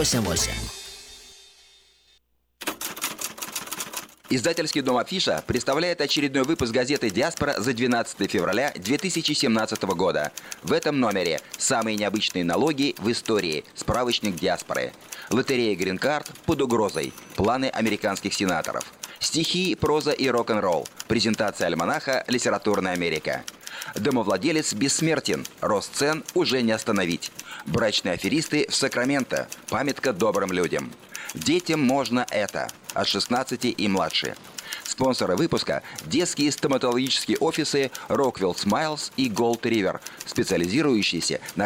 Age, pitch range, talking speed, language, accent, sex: 30-49, 110-150 Hz, 100 wpm, Russian, native, male